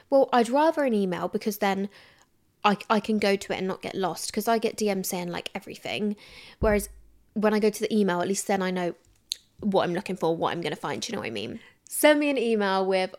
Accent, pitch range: British, 185-245 Hz